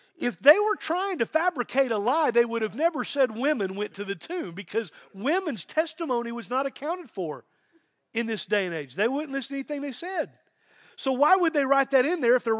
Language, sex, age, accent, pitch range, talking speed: English, male, 40-59, American, 160-265 Hz, 225 wpm